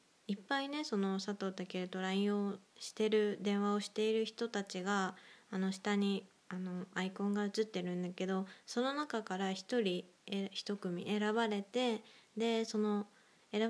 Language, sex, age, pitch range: Japanese, female, 20-39, 190-230 Hz